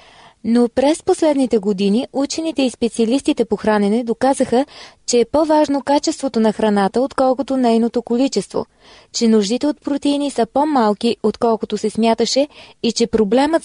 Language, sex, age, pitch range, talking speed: Bulgarian, female, 20-39, 220-275 Hz, 135 wpm